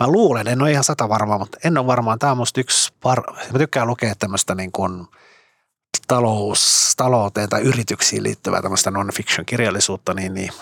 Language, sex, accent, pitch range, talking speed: Finnish, male, native, 95-120 Hz, 175 wpm